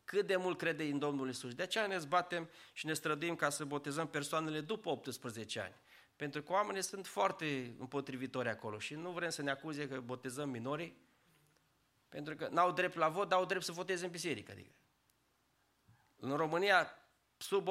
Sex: male